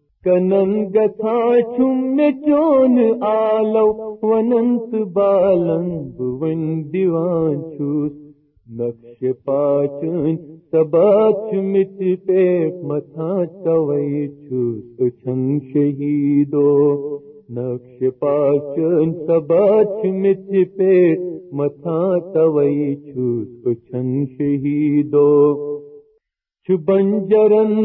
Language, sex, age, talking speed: Urdu, male, 50-69, 55 wpm